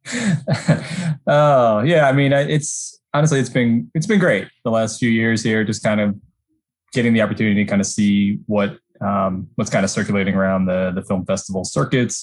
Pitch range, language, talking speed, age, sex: 100-130 Hz, English, 190 wpm, 20-39, male